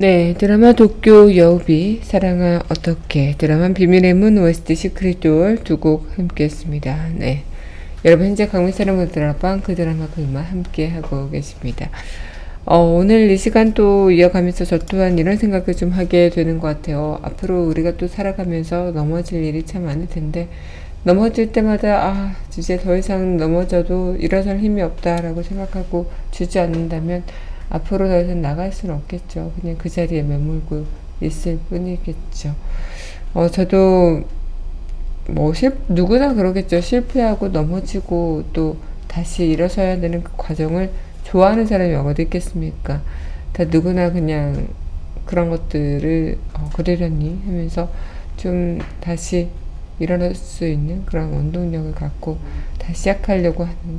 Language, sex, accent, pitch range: Korean, female, native, 155-185 Hz